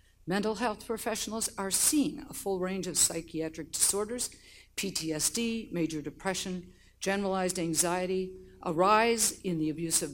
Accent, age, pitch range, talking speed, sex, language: American, 50-69, 160-215 Hz, 130 wpm, female, English